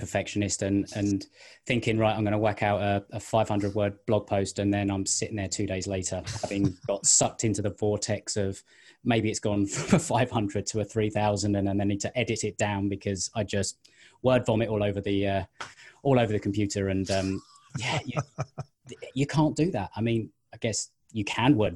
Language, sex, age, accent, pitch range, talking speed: English, male, 20-39, British, 100-120 Hz, 210 wpm